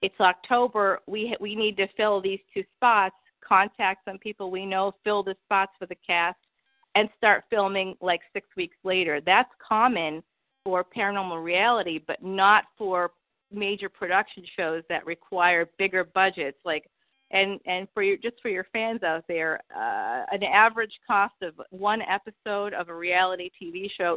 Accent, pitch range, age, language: American, 185-225 Hz, 40-59, English